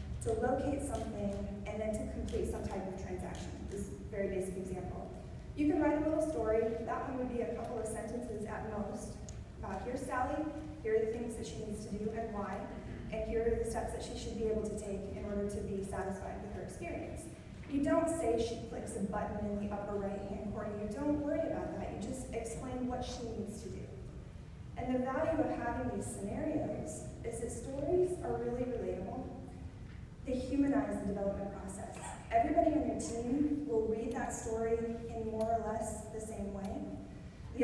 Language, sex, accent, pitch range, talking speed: English, female, American, 205-245 Hz, 200 wpm